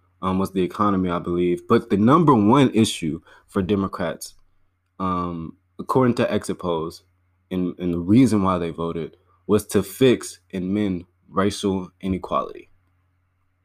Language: English